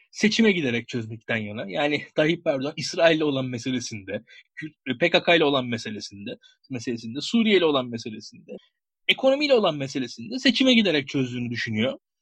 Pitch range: 135-220 Hz